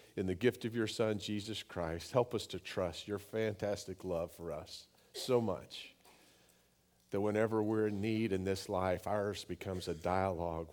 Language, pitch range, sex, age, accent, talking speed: English, 80-100 Hz, male, 50-69, American, 175 wpm